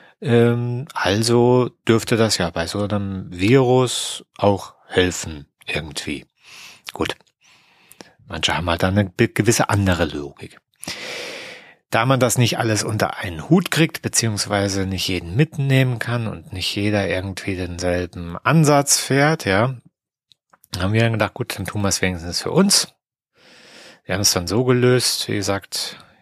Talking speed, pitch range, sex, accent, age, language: 140 wpm, 95-120 Hz, male, German, 40-59, German